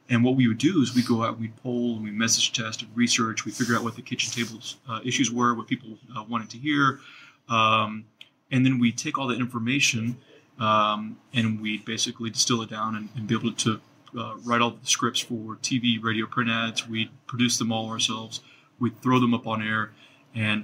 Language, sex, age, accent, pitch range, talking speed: English, male, 30-49, American, 110-125 Hz, 220 wpm